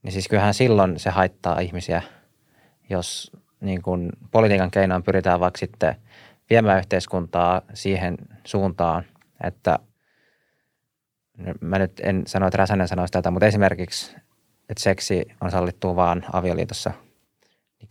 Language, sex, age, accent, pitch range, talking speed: Finnish, male, 20-39, native, 95-110 Hz, 125 wpm